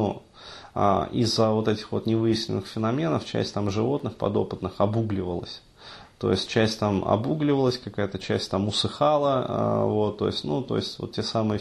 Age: 20-39